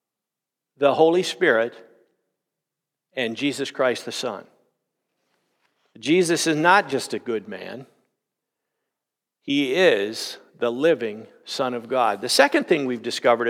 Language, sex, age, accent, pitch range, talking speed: English, male, 50-69, American, 125-160 Hz, 120 wpm